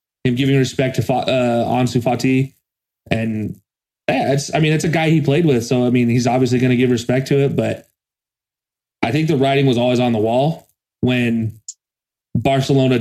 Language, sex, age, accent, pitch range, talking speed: English, male, 20-39, American, 120-145 Hz, 185 wpm